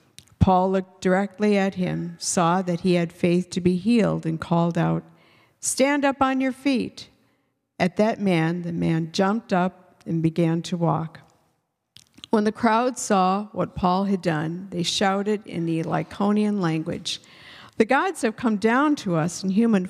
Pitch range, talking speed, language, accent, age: 170-220 Hz, 165 wpm, English, American, 50-69